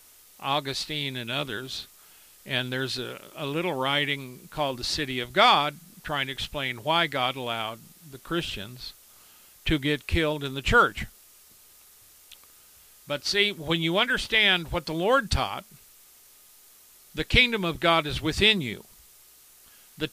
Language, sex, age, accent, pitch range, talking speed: English, male, 60-79, American, 140-200 Hz, 135 wpm